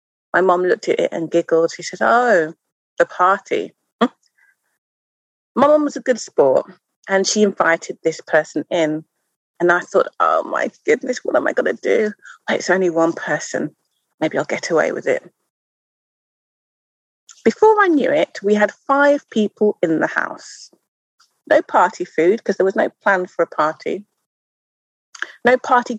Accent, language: British, English